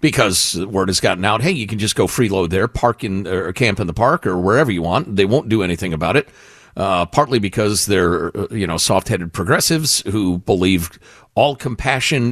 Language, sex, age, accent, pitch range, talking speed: English, male, 50-69, American, 95-140 Hz, 200 wpm